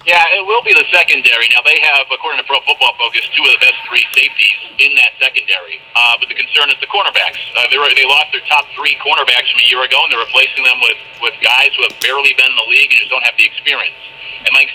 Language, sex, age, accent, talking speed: English, male, 50-69, American, 255 wpm